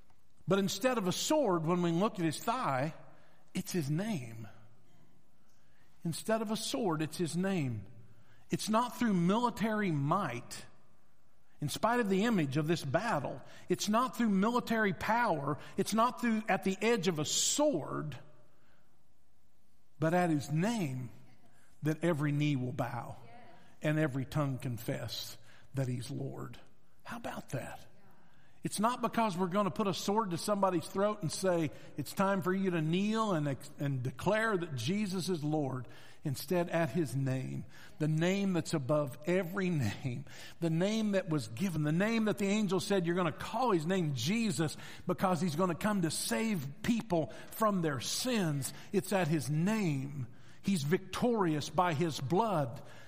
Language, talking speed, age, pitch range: English, 160 wpm, 50-69, 145-195 Hz